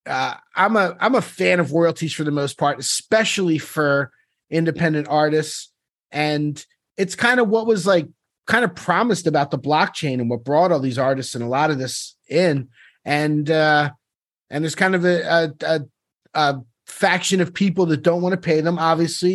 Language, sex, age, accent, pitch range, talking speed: English, male, 30-49, American, 135-170 Hz, 190 wpm